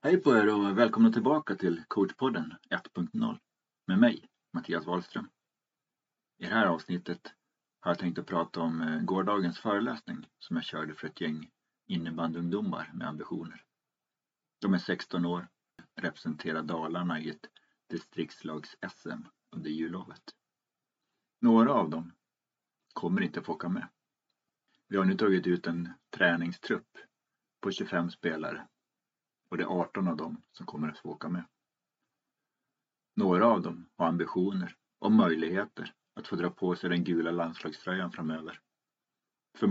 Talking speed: 140 wpm